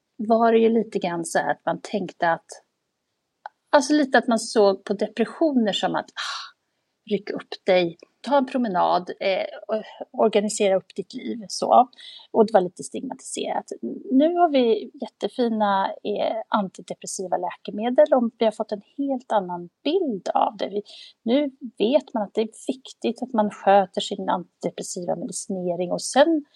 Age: 30-49